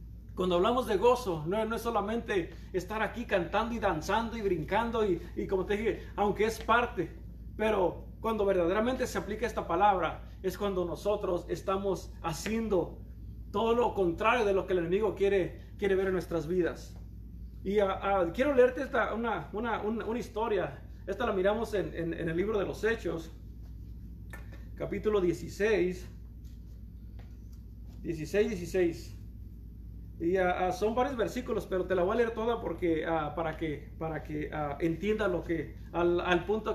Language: Spanish